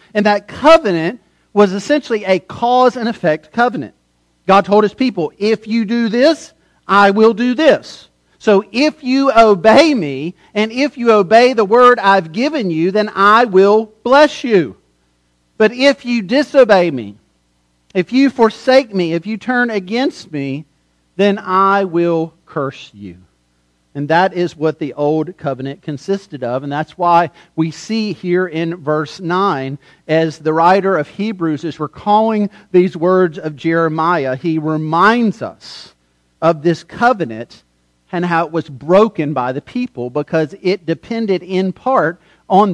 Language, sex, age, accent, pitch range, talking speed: English, male, 40-59, American, 155-220 Hz, 155 wpm